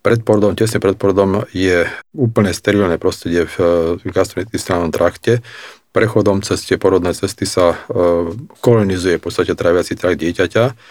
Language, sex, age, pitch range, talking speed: Slovak, male, 40-59, 95-110 Hz, 115 wpm